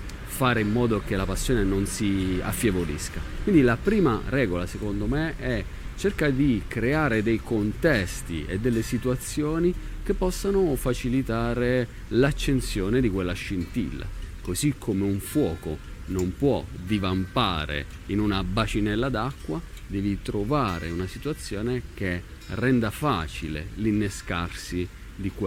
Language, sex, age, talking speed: Italian, male, 40-59, 120 wpm